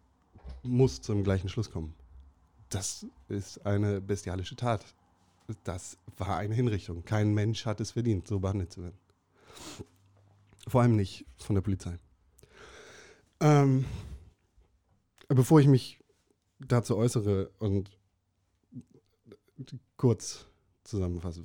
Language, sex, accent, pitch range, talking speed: German, male, German, 90-120 Hz, 105 wpm